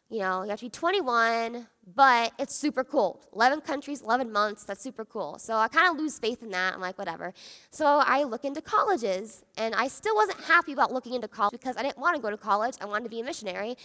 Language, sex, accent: English, female, American